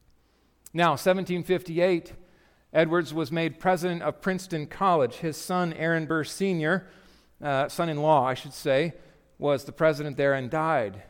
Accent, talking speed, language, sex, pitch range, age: American, 135 wpm, English, male, 115-160 Hz, 40-59